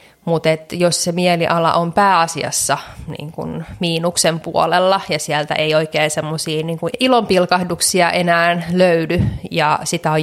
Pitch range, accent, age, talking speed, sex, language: 160-190 Hz, native, 20-39, 110 wpm, female, Finnish